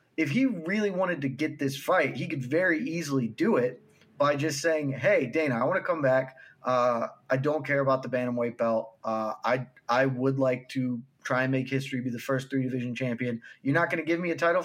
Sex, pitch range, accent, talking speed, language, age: male, 135-220 Hz, American, 225 wpm, English, 20-39